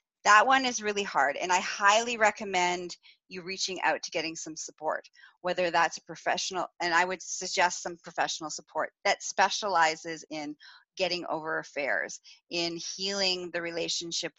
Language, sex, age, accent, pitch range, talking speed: English, female, 30-49, American, 165-215 Hz, 155 wpm